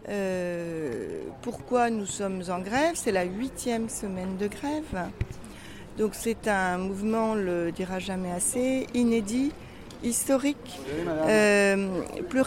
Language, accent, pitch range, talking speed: French, French, 195-260 Hz, 125 wpm